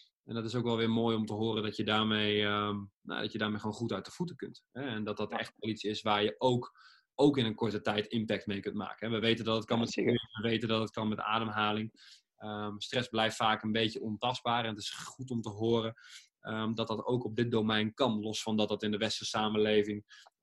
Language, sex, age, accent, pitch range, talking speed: Dutch, male, 20-39, Dutch, 110-130 Hz, 245 wpm